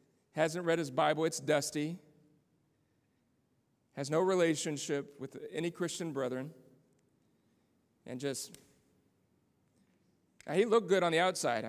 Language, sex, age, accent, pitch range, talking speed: English, male, 40-59, American, 150-190 Hz, 110 wpm